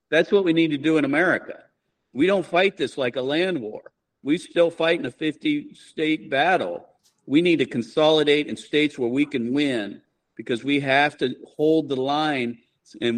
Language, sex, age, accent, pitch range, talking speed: English, male, 50-69, American, 130-165 Hz, 185 wpm